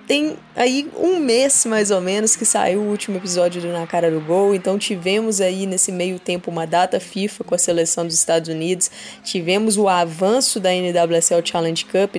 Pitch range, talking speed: 185-230 Hz, 190 wpm